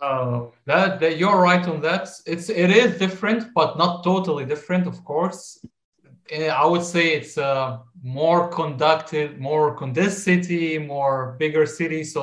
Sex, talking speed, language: male, 150 wpm, English